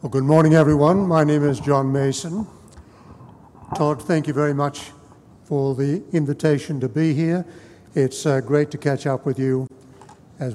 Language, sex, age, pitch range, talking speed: English, male, 60-79, 135-170 Hz, 165 wpm